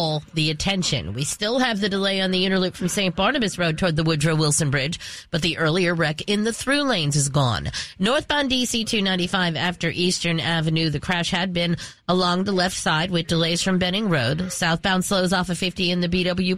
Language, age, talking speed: English, 30-49, 205 wpm